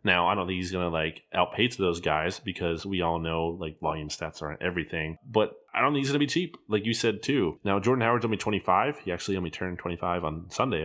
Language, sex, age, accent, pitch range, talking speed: English, male, 20-39, American, 85-105 Hz, 255 wpm